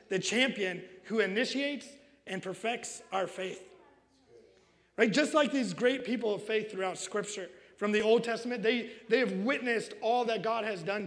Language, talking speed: English, 170 wpm